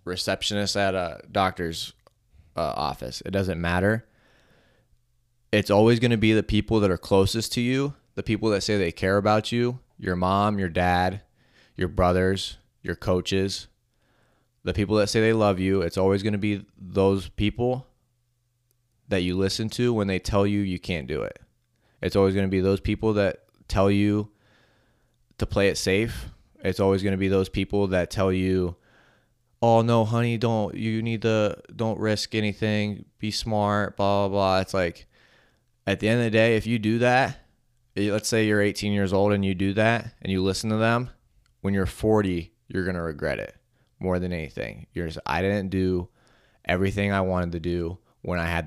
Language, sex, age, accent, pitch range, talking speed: English, male, 20-39, American, 95-115 Hz, 185 wpm